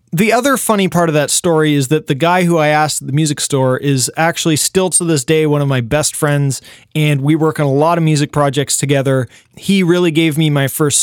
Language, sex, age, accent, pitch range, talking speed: English, male, 20-39, American, 145-180 Hz, 245 wpm